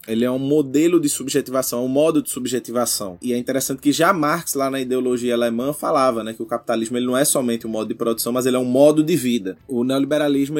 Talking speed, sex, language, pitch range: 245 wpm, male, Portuguese, 130-170 Hz